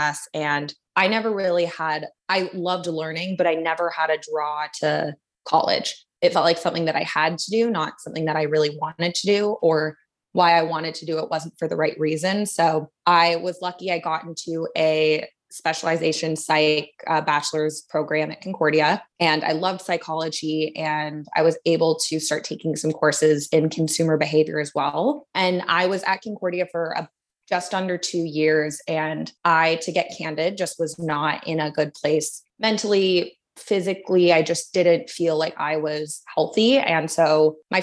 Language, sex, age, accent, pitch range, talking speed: English, female, 20-39, American, 155-175 Hz, 180 wpm